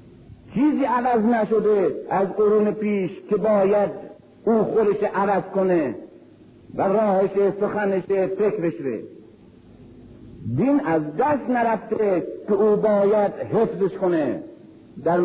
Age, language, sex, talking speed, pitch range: 50-69, Persian, male, 105 wpm, 180-245 Hz